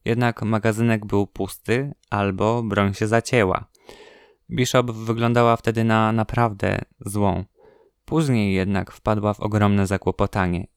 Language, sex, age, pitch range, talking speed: Polish, male, 20-39, 100-120 Hz, 110 wpm